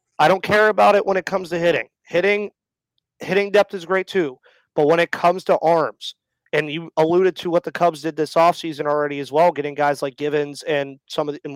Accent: American